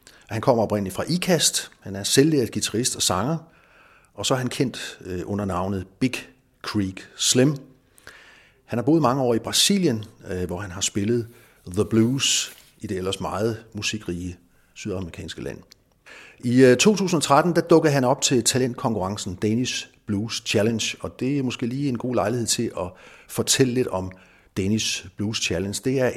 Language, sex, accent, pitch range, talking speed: Danish, male, native, 100-130 Hz, 160 wpm